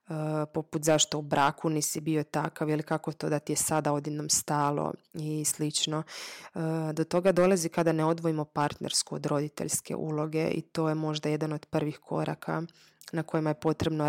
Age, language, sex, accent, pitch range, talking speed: 20-39, Croatian, female, native, 150-170 Hz, 170 wpm